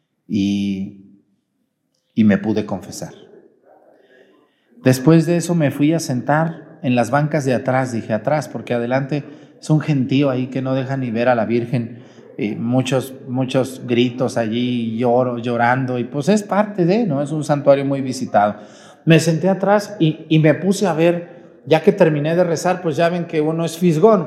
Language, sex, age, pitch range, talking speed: Spanish, male, 40-59, 125-175 Hz, 180 wpm